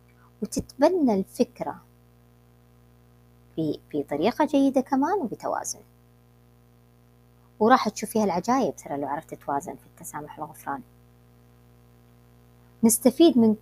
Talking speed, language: 85 wpm, Arabic